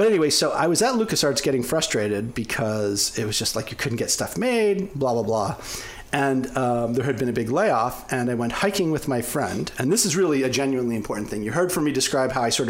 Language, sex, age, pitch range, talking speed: Romanian, male, 40-59, 120-150 Hz, 250 wpm